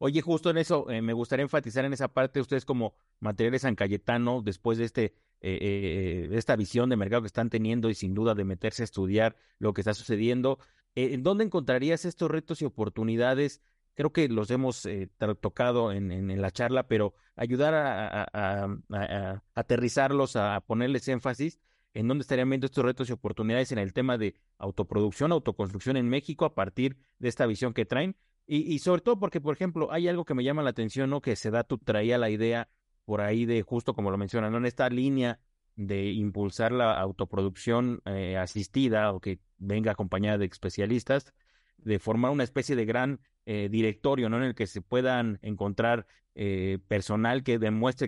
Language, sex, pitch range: Spanish, male, 105-130 Hz